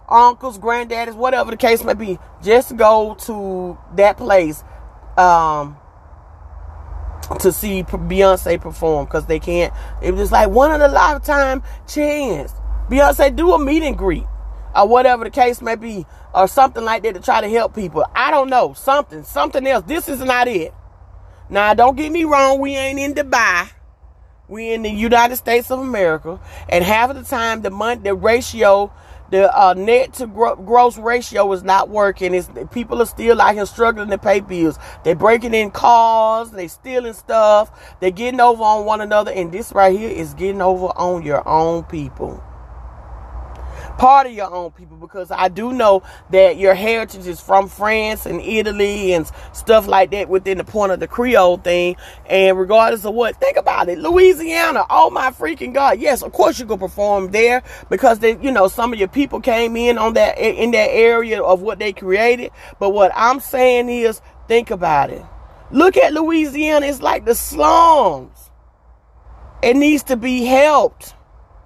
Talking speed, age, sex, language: 175 wpm, 30-49, male, English